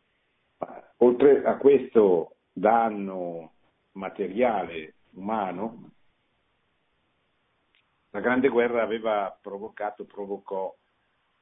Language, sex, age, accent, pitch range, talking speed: Italian, male, 50-69, native, 90-110 Hz, 65 wpm